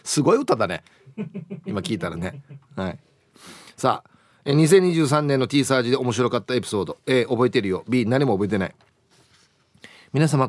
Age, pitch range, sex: 30-49, 120-160 Hz, male